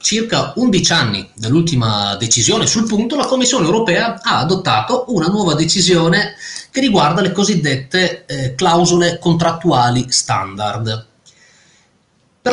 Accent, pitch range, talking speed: native, 115-175 Hz, 115 wpm